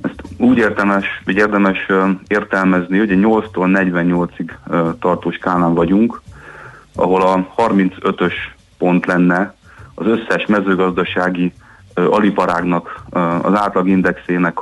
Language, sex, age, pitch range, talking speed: Hungarian, male, 30-49, 90-100 Hz, 95 wpm